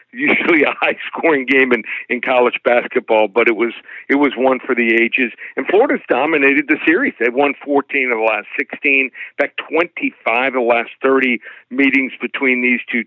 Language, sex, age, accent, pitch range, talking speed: English, male, 60-79, American, 125-145 Hz, 185 wpm